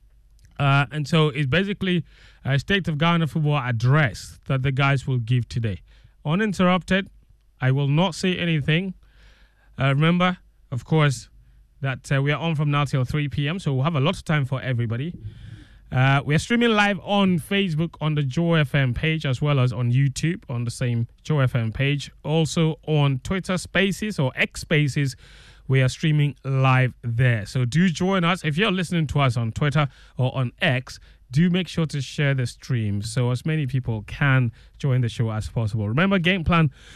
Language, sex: English, male